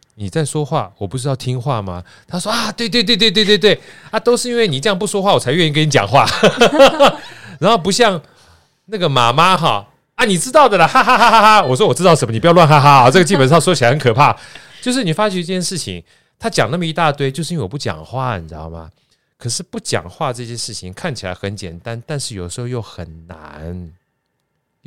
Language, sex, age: Chinese, male, 30-49